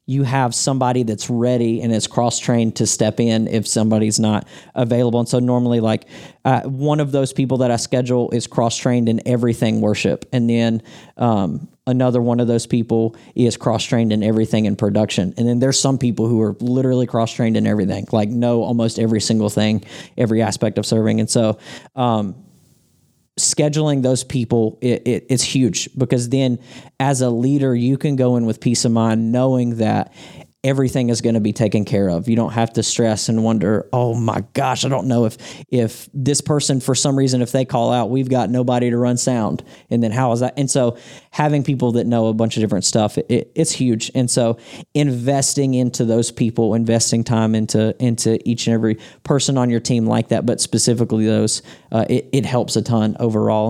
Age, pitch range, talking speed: 40-59, 115-130 Hz, 200 wpm